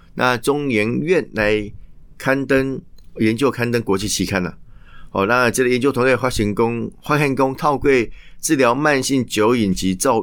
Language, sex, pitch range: Chinese, male, 95-130 Hz